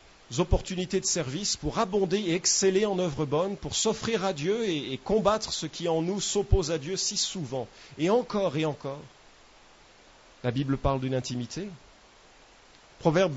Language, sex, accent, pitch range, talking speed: English, male, French, 125-180 Hz, 160 wpm